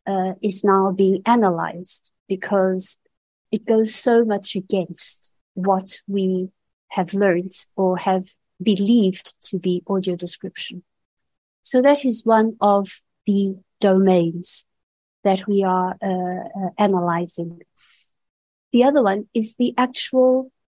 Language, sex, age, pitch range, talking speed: English, female, 60-79, 185-225 Hz, 120 wpm